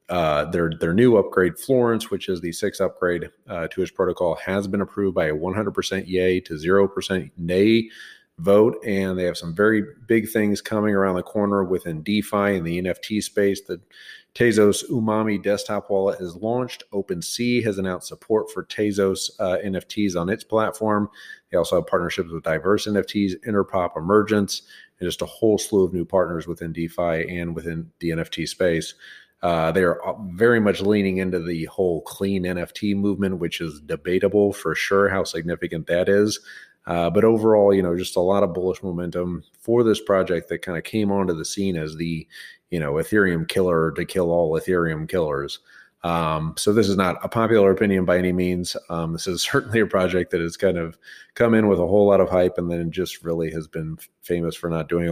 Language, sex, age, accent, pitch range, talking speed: English, male, 40-59, American, 85-105 Hz, 195 wpm